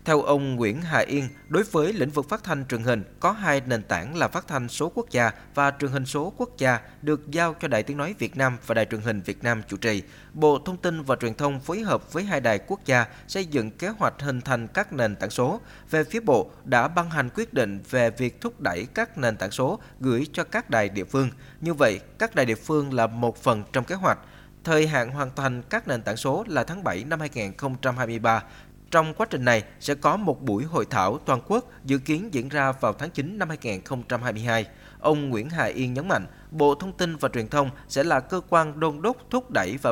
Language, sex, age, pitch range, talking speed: Vietnamese, male, 20-39, 120-155 Hz, 235 wpm